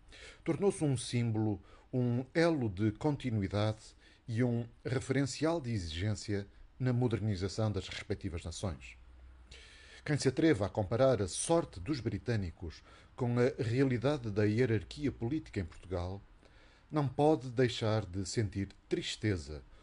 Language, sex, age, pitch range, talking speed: Portuguese, male, 50-69, 100-130 Hz, 120 wpm